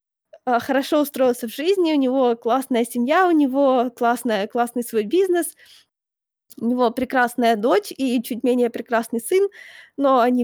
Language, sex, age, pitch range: Ukrainian, female, 20-39, 230-275 Hz